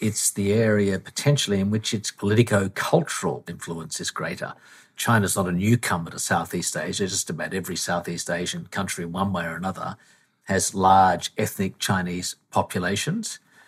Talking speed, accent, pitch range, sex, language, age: 145 wpm, Australian, 95-125 Hz, male, English, 50-69